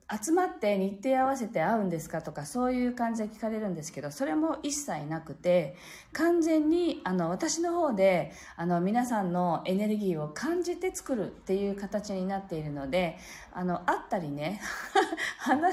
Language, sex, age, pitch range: Japanese, female, 40-59, 165-240 Hz